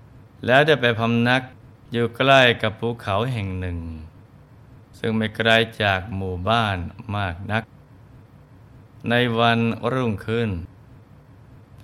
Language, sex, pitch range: Thai, male, 105-125 Hz